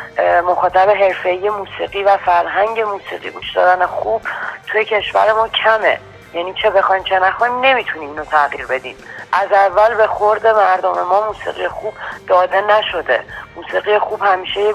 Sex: female